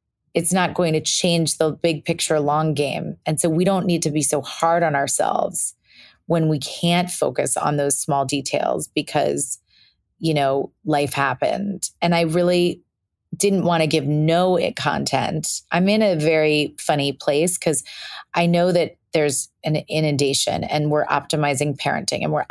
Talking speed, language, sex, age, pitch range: 170 wpm, English, female, 30-49, 140-170 Hz